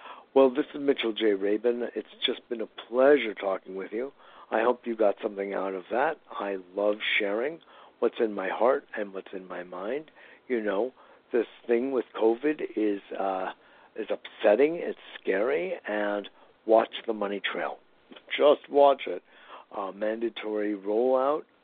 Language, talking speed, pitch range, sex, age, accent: English, 160 wpm, 100-125 Hz, male, 60-79, American